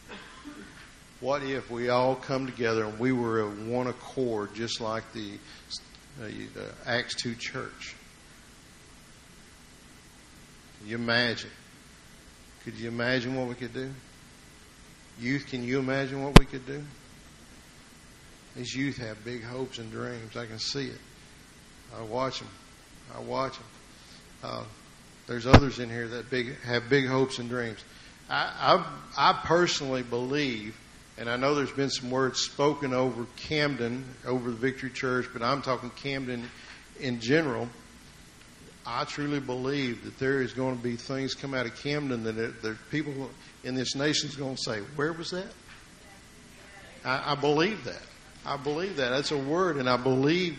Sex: male